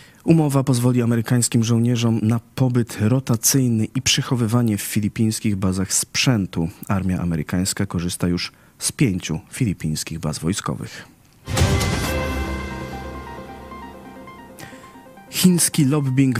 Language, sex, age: Polish, male, 40-59